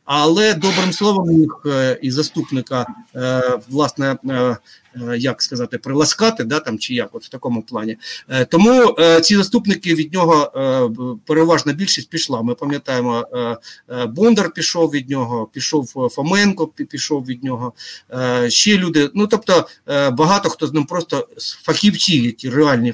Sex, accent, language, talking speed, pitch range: male, native, Ukrainian, 150 wpm, 130-190 Hz